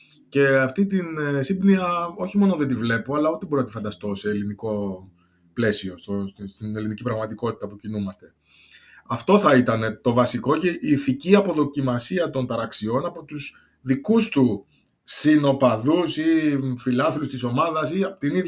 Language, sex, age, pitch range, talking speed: Greek, male, 20-39, 115-145 Hz, 135 wpm